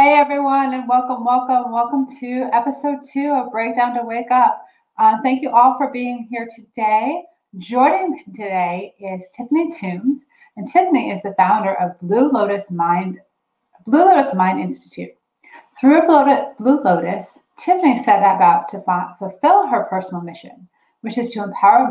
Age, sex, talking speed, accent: 30-49, female, 155 wpm, American